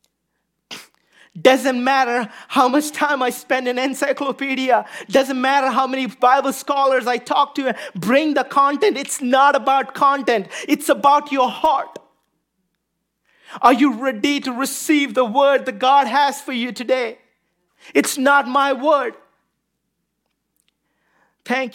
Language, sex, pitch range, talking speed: English, male, 200-275 Hz, 130 wpm